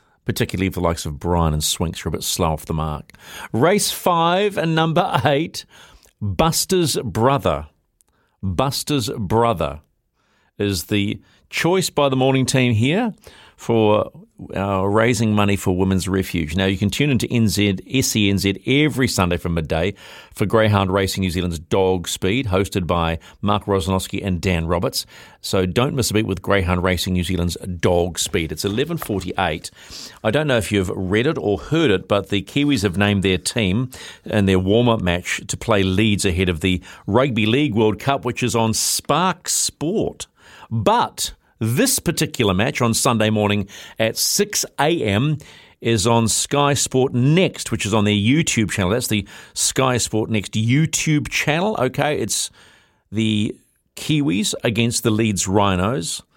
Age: 50-69